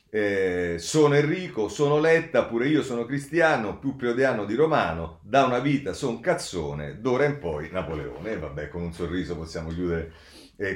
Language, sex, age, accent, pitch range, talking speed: Italian, male, 40-59, native, 85-125 Hz, 165 wpm